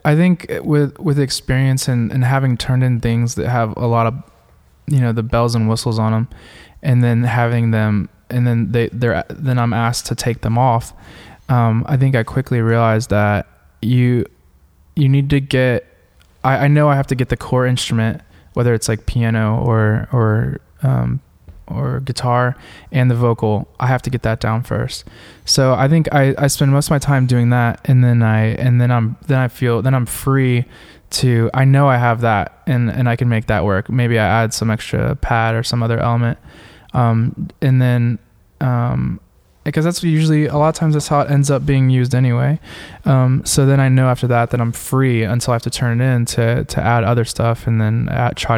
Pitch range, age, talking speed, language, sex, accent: 110-130 Hz, 20-39, 210 wpm, English, male, American